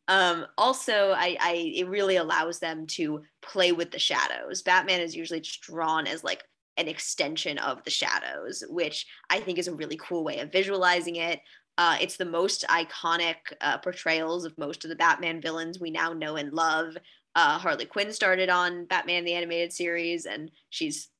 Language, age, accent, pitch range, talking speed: English, 20-39, American, 165-185 Hz, 185 wpm